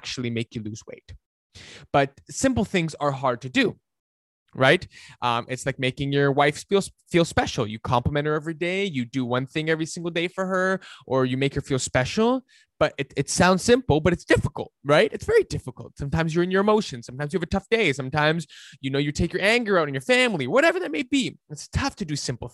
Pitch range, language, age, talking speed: 130-170 Hz, English, 20-39, 225 wpm